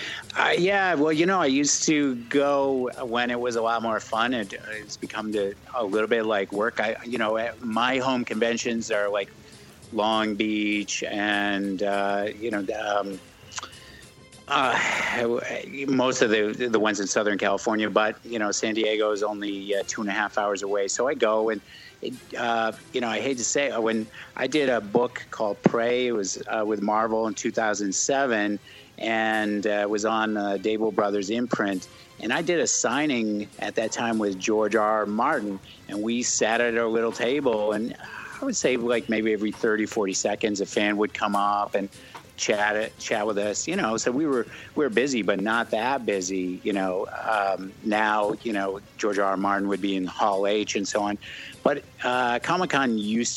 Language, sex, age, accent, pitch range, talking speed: English, male, 50-69, American, 105-120 Hz, 195 wpm